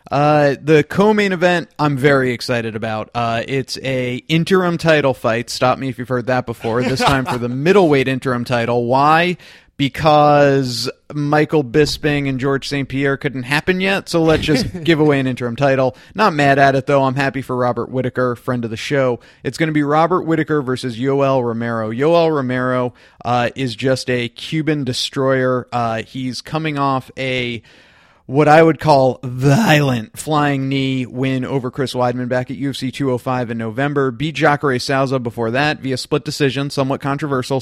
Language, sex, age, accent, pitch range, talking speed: English, male, 30-49, American, 125-145 Hz, 175 wpm